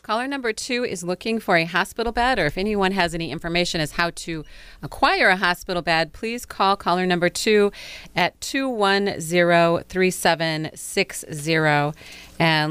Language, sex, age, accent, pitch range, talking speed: English, female, 30-49, American, 165-200 Hz, 140 wpm